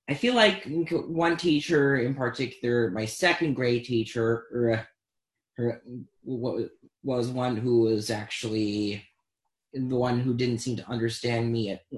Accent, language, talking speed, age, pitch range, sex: American, English, 125 wpm, 30-49, 120-155 Hz, male